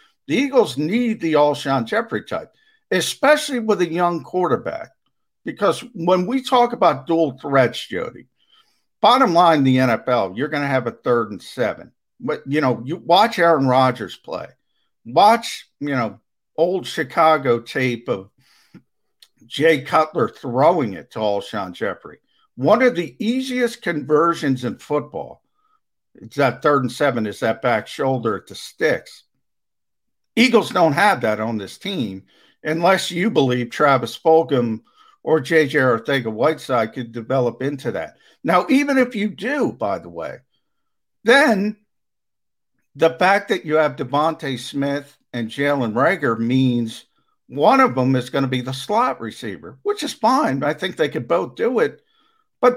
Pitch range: 130-210 Hz